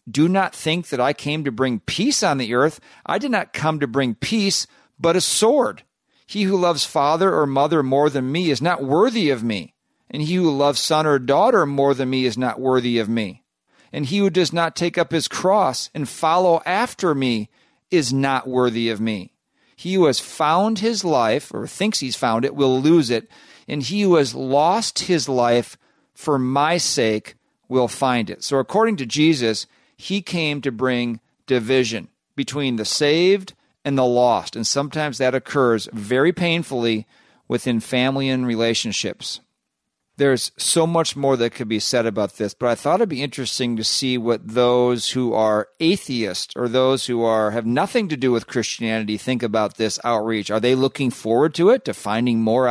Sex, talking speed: male, 190 wpm